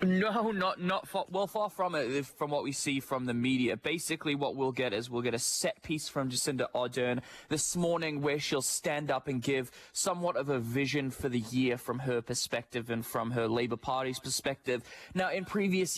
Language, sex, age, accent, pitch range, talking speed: English, male, 20-39, Australian, 125-155 Hz, 205 wpm